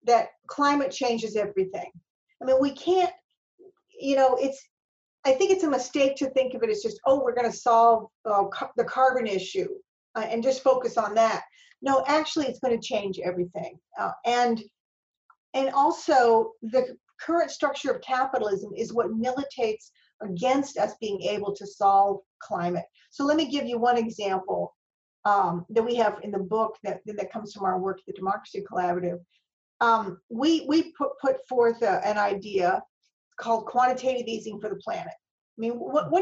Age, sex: 50-69, female